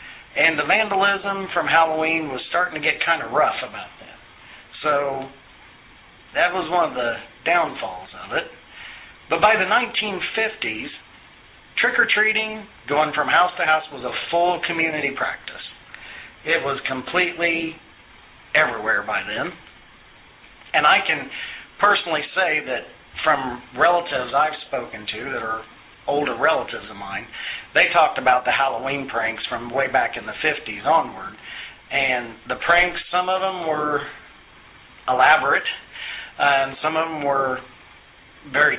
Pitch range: 135-175 Hz